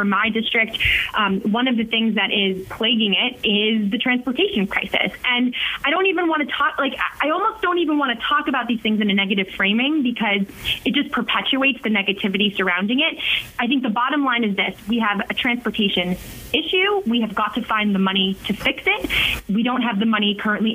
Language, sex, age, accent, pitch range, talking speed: English, female, 20-39, American, 210-260 Hz, 210 wpm